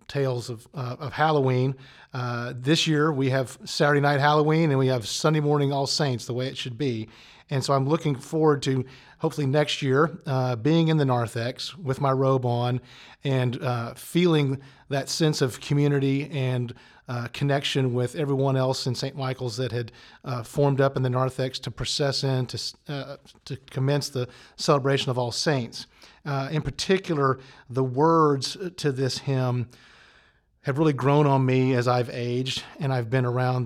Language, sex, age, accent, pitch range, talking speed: English, male, 40-59, American, 125-145 Hz, 175 wpm